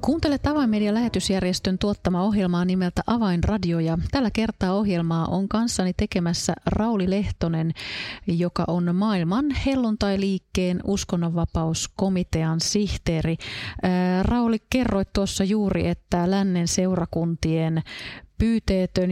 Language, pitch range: Finnish, 165-200 Hz